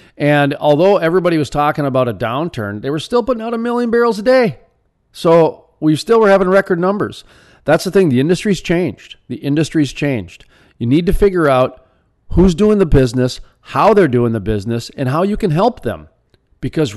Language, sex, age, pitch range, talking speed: English, male, 40-59, 115-160 Hz, 195 wpm